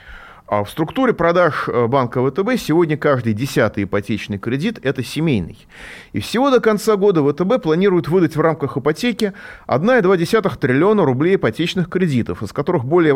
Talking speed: 140 wpm